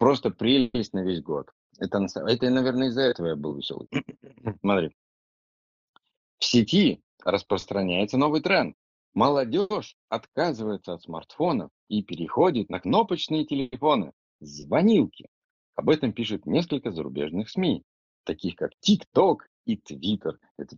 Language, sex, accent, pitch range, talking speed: Russian, male, native, 85-140 Hz, 120 wpm